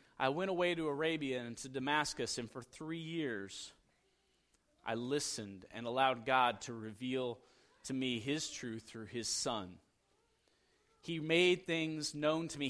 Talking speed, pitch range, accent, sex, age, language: 150 wpm, 135-170 Hz, American, male, 30-49, English